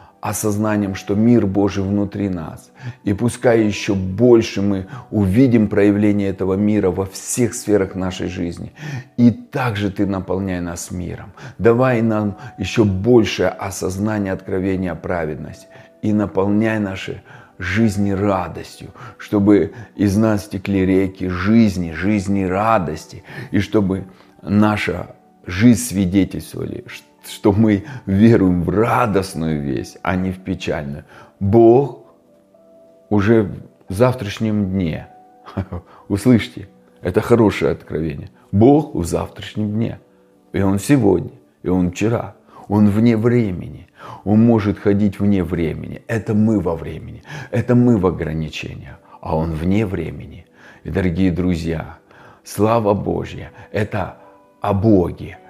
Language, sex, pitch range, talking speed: Russian, male, 95-110 Hz, 115 wpm